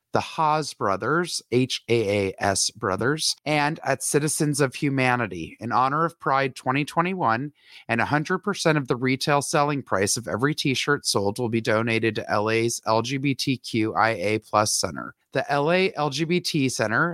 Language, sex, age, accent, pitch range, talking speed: English, male, 30-49, American, 110-145 Hz, 135 wpm